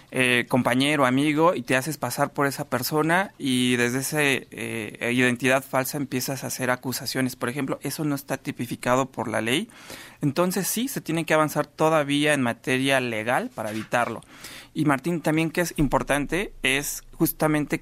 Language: Spanish